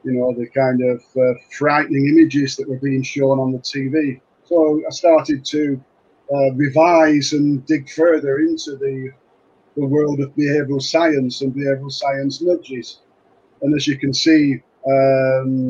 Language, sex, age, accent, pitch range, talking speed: English, male, 50-69, British, 135-150 Hz, 155 wpm